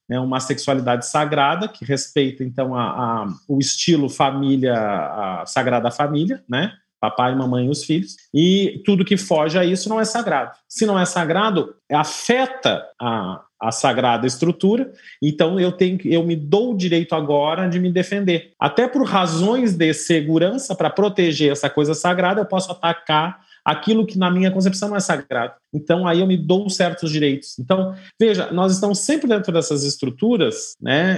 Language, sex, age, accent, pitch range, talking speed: Portuguese, male, 40-59, Brazilian, 135-175 Hz, 170 wpm